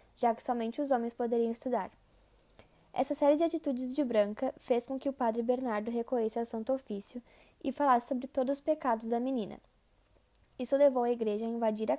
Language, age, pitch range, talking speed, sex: Portuguese, 10-29, 230-270 Hz, 190 wpm, female